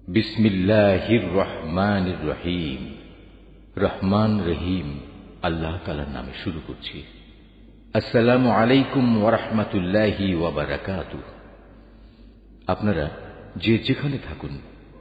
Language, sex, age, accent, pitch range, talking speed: English, male, 50-69, Indian, 85-110 Hz, 90 wpm